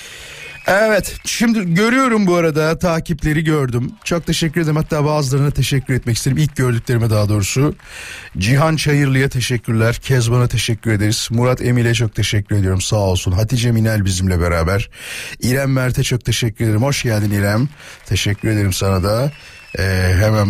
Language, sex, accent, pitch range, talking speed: Turkish, male, native, 105-135 Hz, 145 wpm